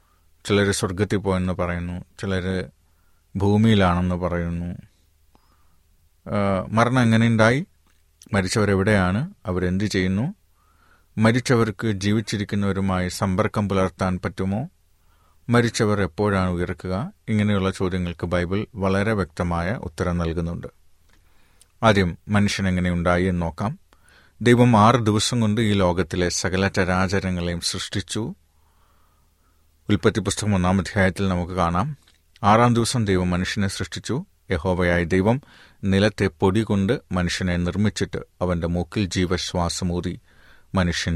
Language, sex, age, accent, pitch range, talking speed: Malayalam, male, 30-49, native, 85-105 Hz, 90 wpm